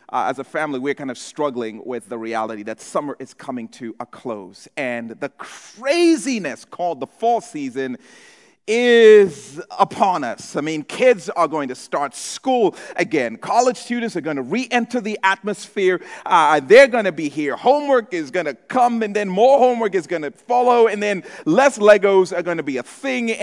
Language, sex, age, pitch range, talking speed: English, male, 40-59, 180-265 Hz, 190 wpm